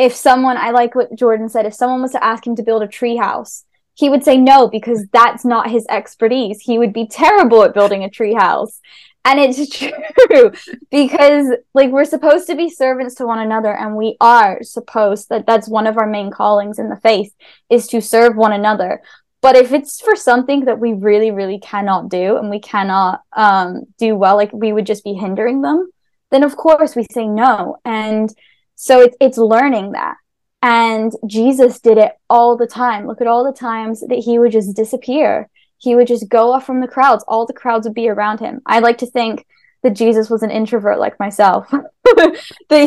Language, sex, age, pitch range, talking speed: English, female, 10-29, 220-255 Hz, 205 wpm